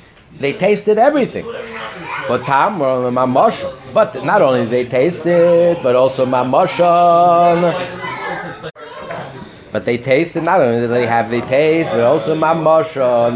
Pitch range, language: 120-160 Hz, English